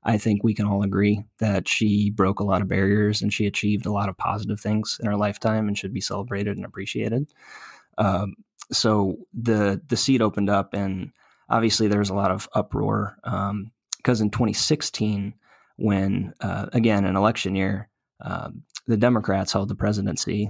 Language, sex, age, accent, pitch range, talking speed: English, male, 20-39, American, 100-110 Hz, 180 wpm